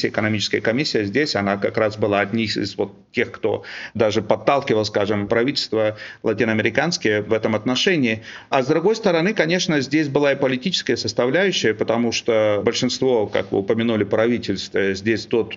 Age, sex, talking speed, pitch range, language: 40-59, male, 155 wpm, 110-140 Hz, Russian